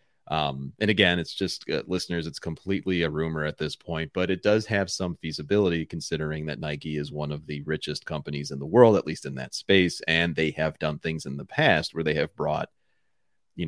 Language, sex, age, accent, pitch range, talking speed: English, male, 30-49, American, 75-95 Hz, 220 wpm